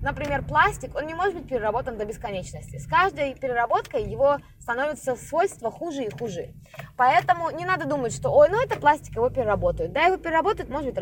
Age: 20-39